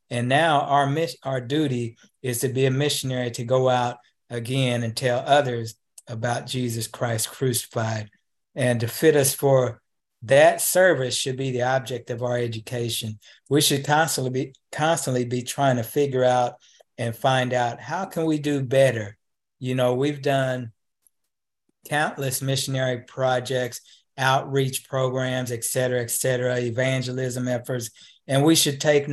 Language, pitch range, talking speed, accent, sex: English, 125-140 Hz, 150 wpm, American, male